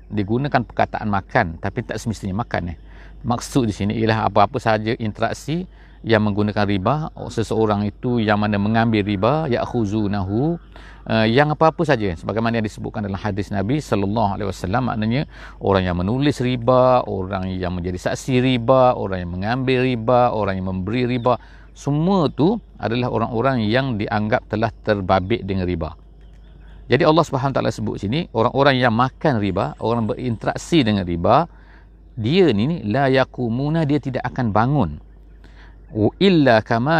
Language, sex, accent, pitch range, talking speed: English, male, Indonesian, 100-130 Hz, 140 wpm